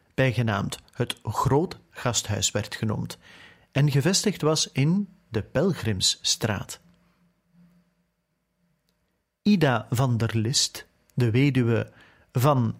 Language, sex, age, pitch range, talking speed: Dutch, male, 40-59, 115-155 Hz, 85 wpm